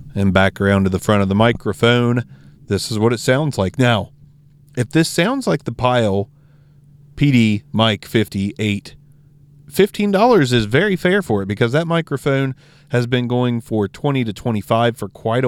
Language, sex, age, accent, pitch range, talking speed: English, male, 30-49, American, 105-145 Hz, 165 wpm